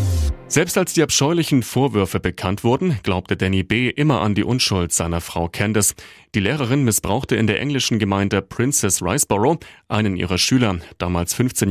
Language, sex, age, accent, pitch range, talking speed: German, male, 30-49, German, 95-130 Hz, 160 wpm